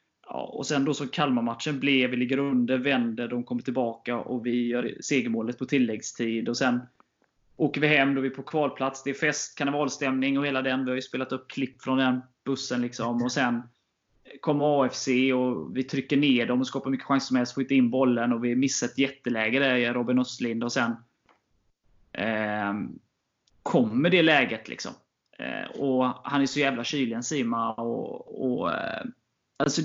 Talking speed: 190 wpm